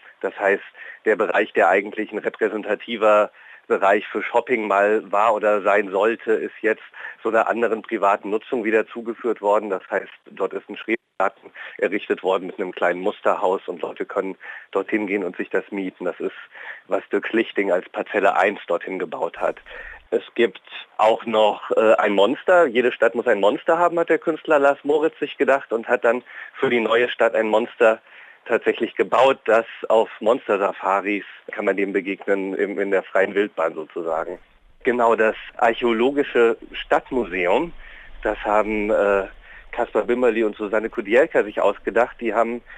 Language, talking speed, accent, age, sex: German, 165 wpm, German, 40-59, male